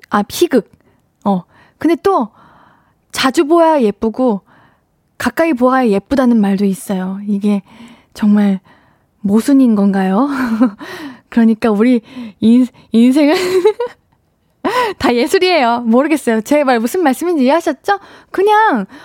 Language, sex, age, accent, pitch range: Korean, female, 20-39, native, 230-320 Hz